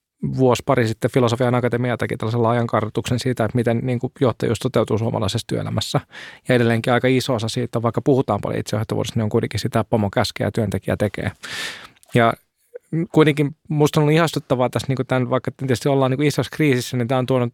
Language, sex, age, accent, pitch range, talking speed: Finnish, male, 20-39, native, 115-130 Hz, 185 wpm